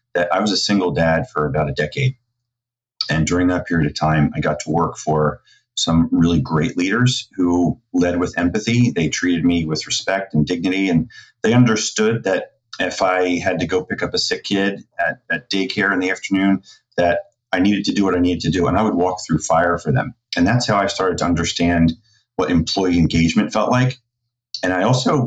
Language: English